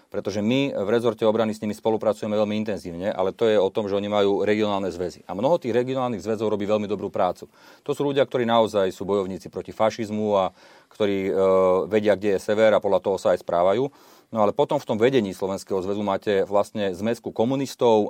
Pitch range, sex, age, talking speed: 95-110 Hz, male, 40-59, 210 wpm